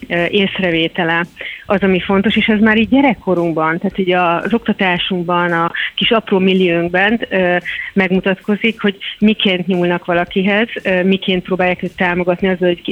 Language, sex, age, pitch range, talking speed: Hungarian, female, 30-49, 180-210 Hz, 130 wpm